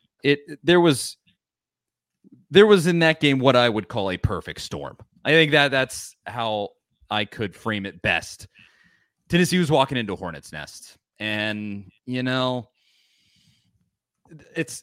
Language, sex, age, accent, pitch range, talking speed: English, male, 30-49, American, 95-145 Hz, 140 wpm